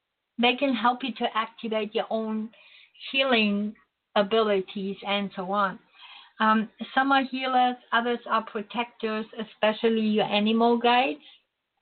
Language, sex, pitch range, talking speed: English, female, 200-235 Hz, 120 wpm